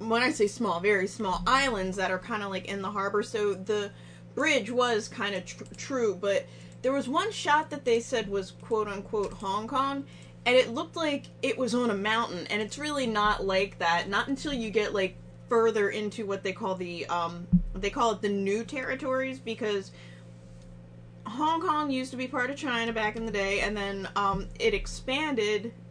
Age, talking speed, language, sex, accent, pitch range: 20-39, 200 wpm, English, female, American, 195-255 Hz